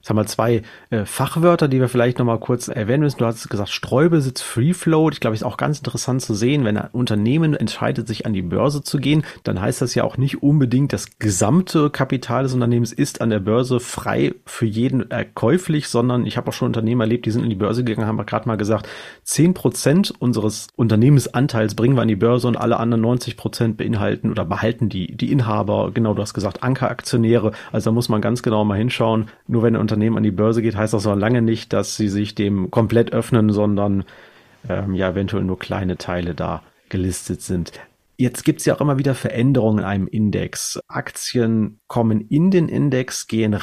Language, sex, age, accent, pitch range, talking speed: German, male, 40-59, German, 105-130 Hz, 205 wpm